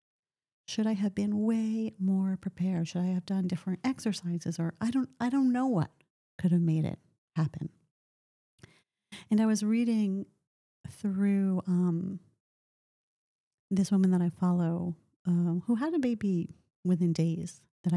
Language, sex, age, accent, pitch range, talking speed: English, female, 40-59, American, 170-205 Hz, 145 wpm